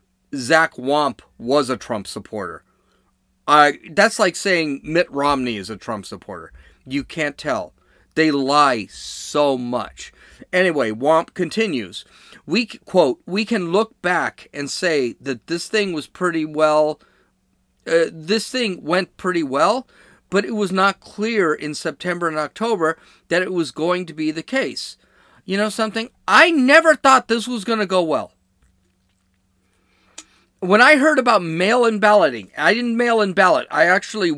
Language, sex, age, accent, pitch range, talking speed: English, male, 40-59, American, 140-210 Hz, 150 wpm